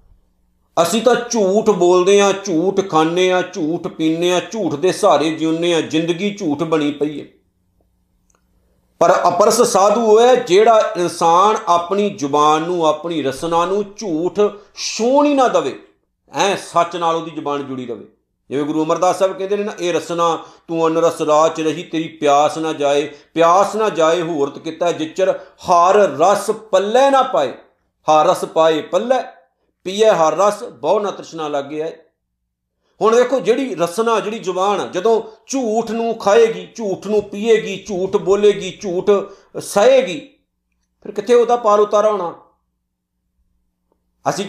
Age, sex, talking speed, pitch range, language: 50-69, male, 145 wpm, 160-215 Hz, Punjabi